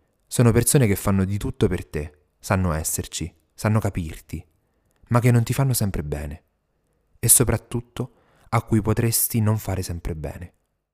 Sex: male